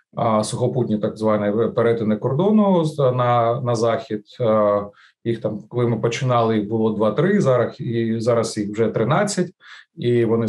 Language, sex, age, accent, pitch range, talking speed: Ukrainian, male, 30-49, native, 110-135 Hz, 135 wpm